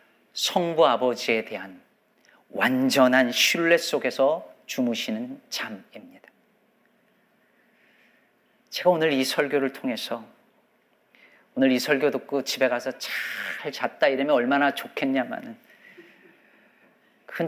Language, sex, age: Korean, male, 40-59